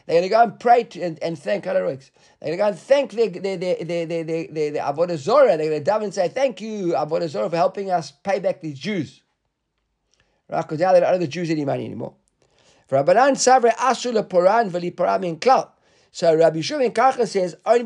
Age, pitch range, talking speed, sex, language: 50-69, 160-220 Hz, 190 wpm, male, English